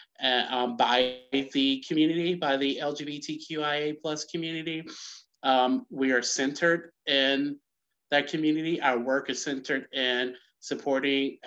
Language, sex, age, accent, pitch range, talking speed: English, male, 30-49, American, 130-150 Hz, 120 wpm